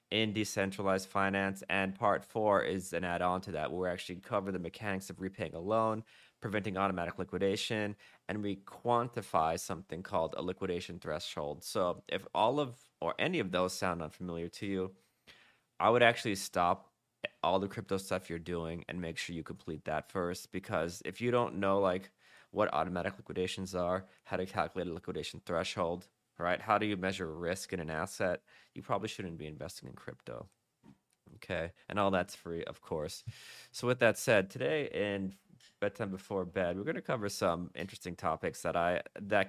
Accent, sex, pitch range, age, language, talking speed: American, male, 90-105 Hz, 30-49, English, 180 wpm